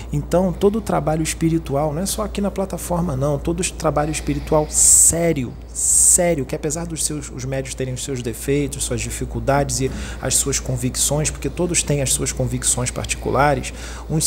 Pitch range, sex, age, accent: 130-170 Hz, male, 40-59, Brazilian